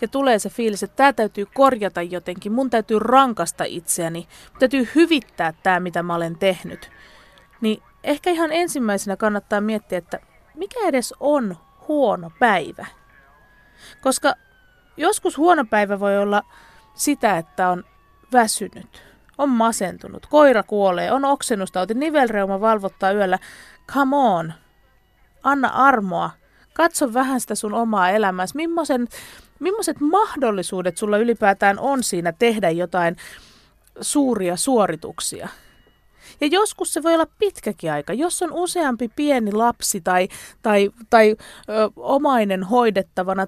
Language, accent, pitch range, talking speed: Finnish, native, 190-275 Hz, 120 wpm